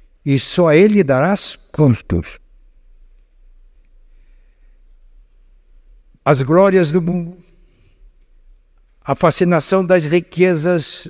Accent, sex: Brazilian, male